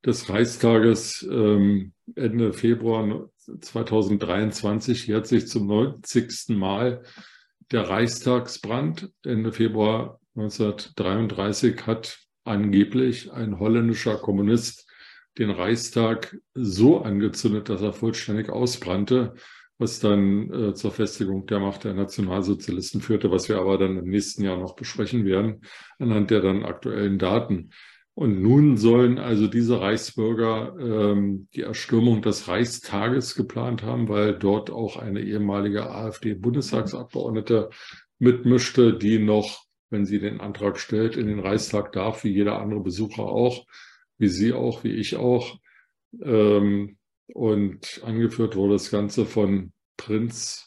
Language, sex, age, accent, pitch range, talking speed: German, male, 50-69, German, 100-115 Hz, 120 wpm